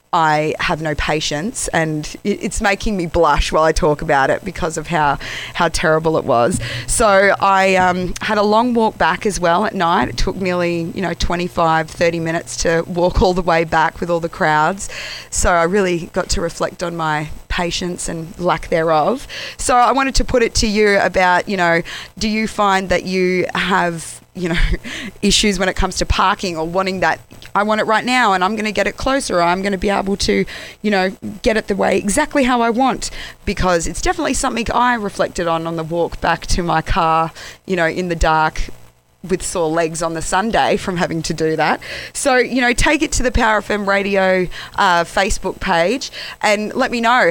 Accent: Australian